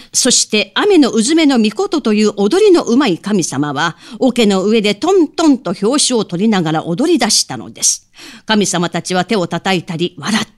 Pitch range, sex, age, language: 180-260 Hz, female, 40-59, Japanese